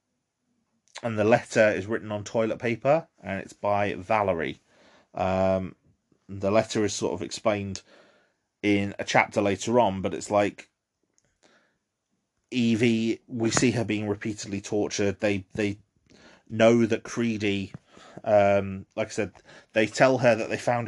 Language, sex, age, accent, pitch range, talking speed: English, male, 30-49, British, 95-110 Hz, 140 wpm